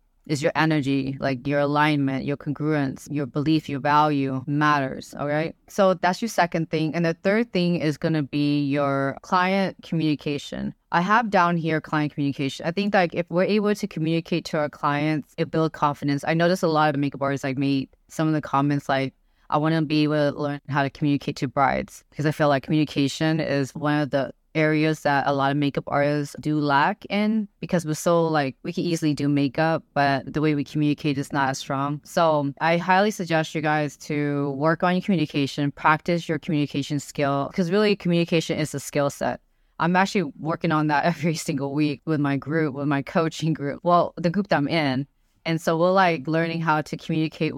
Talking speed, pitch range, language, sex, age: 210 wpm, 145-165 Hz, English, female, 20-39